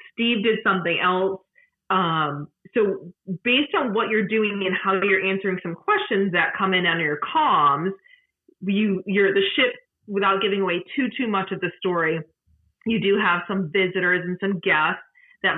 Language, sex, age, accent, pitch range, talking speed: English, female, 30-49, American, 175-215 Hz, 170 wpm